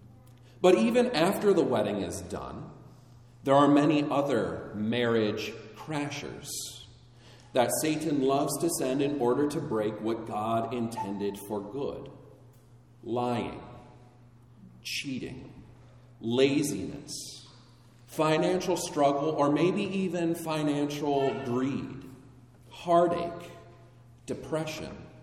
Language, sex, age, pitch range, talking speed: English, male, 40-59, 120-160 Hz, 95 wpm